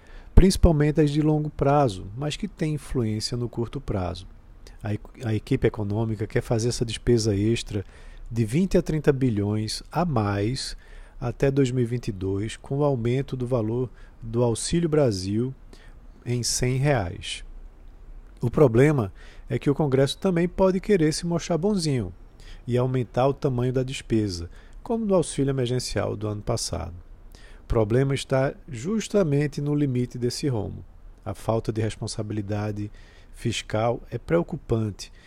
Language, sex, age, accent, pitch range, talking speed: Portuguese, male, 50-69, Brazilian, 105-140 Hz, 135 wpm